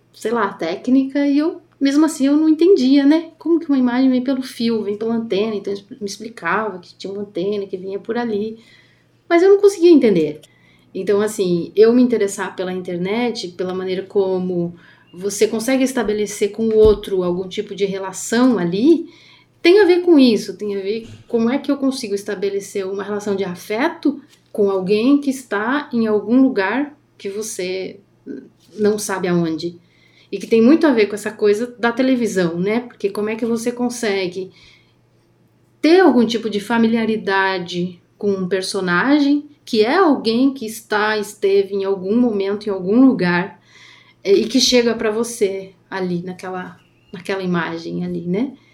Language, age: Portuguese, 30-49